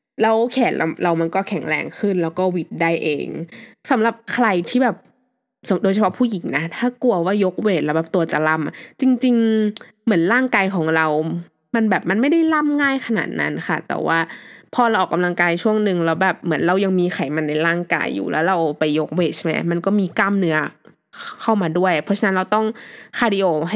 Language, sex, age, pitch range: Thai, female, 20-39, 160-220 Hz